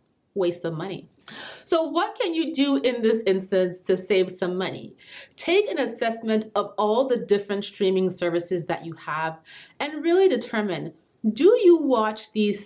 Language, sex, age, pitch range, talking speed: English, female, 30-49, 180-225 Hz, 160 wpm